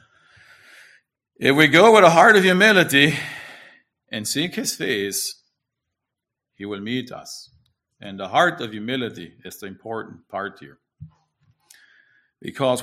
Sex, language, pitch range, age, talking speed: male, English, 115-150 Hz, 50-69, 125 wpm